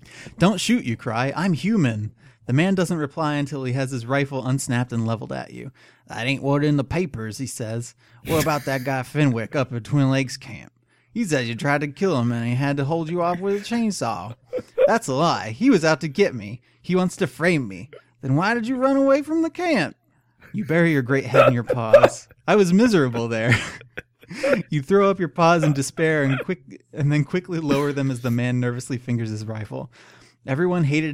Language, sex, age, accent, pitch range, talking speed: English, male, 30-49, American, 120-170 Hz, 220 wpm